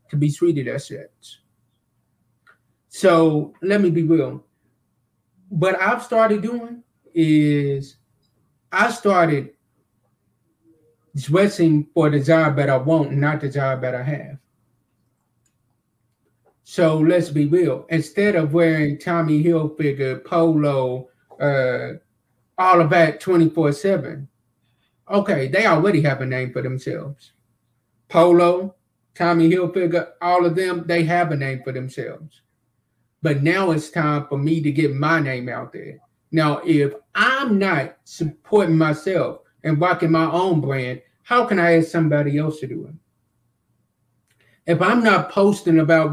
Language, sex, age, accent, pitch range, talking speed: English, male, 30-49, American, 140-170 Hz, 135 wpm